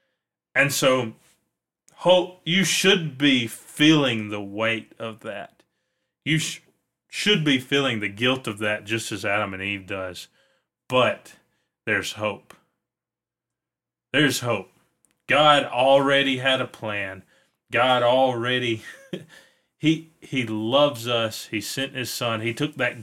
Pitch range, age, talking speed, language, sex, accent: 110-140 Hz, 30-49, 125 wpm, English, male, American